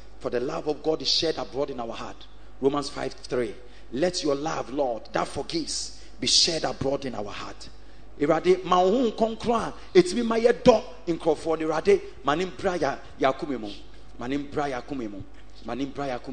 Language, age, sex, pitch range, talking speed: English, 40-59, male, 135-215 Hz, 175 wpm